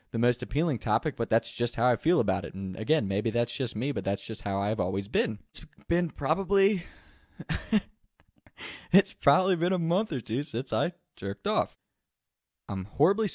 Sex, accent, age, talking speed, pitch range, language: male, American, 20-39, 185 wpm, 100-145 Hz, English